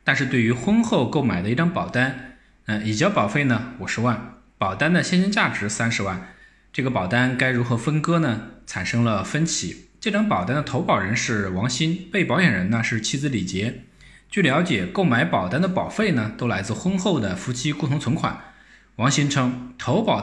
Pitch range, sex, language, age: 110-165 Hz, male, Chinese, 20-39